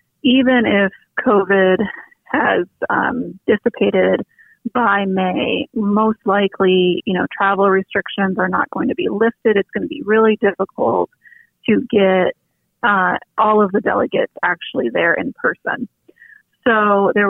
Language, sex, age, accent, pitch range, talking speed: English, female, 30-49, American, 185-230 Hz, 135 wpm